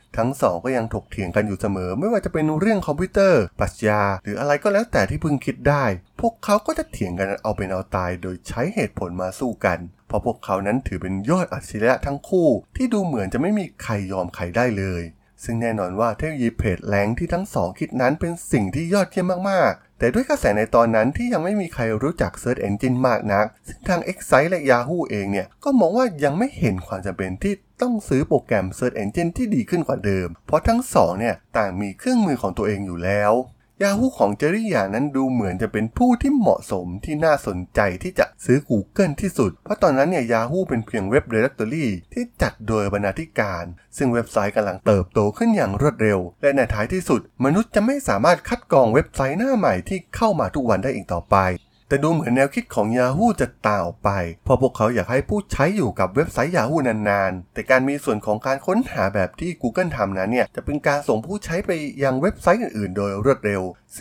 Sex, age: male, 20-39